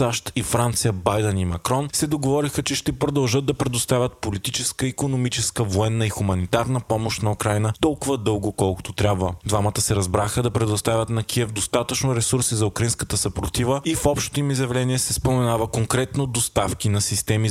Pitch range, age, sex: 100-130 Hz, 20-39, male